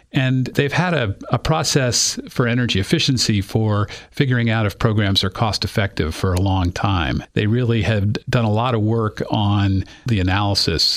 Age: 50-69